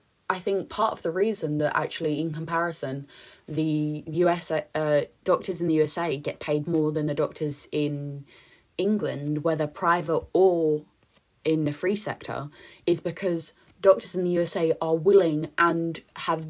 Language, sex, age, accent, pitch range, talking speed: English, female, 20-39, British, 150-170 Hz, 155 wpm